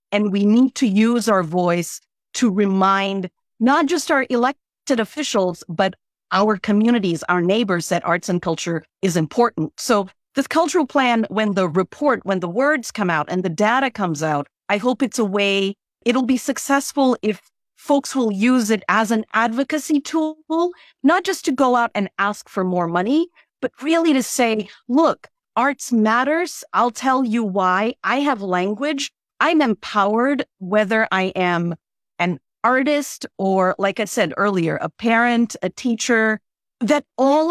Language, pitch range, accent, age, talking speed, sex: English, 185-255 Hz, American, 40-59, 160 wpm, female